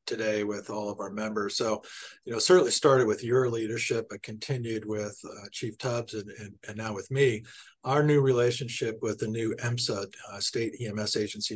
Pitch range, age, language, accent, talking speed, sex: 105-120 Hz, 50-69, English, American, 190 wpm, male